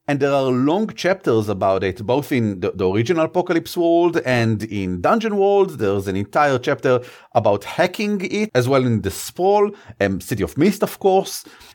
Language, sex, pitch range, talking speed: English, male, 125-175 Hz, 190 wpm